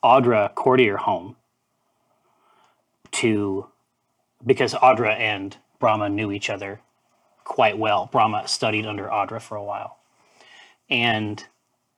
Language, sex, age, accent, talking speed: English, male, 30-49, American, 105 wpm